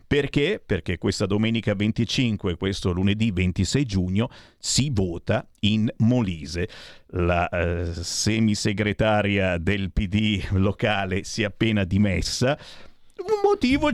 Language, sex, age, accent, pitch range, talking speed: Italian, male, 50-69, native, 100-150 Hz, 110 wpm